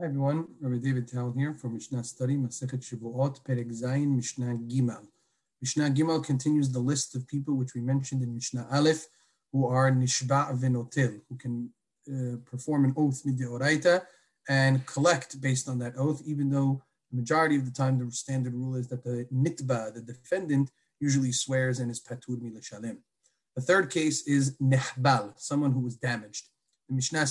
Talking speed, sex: 165 wpm, male